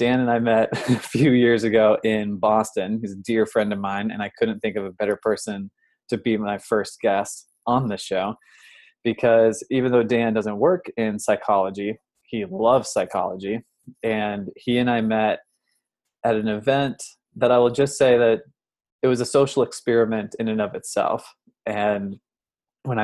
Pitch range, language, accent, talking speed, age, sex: 105-120 Hz, English, American, 175 wpm, 20-39, male